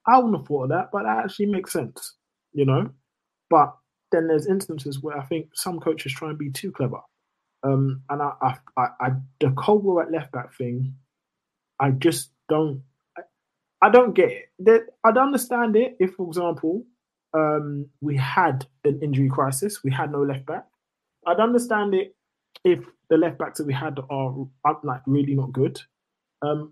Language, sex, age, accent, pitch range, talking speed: English, male, 20-39, British, 135-175 Hz, 180 wpm